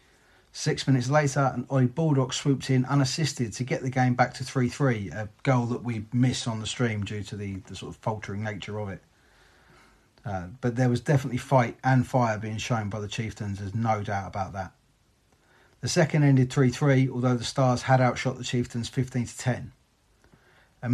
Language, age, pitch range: English, 30-49, 115-135 Hz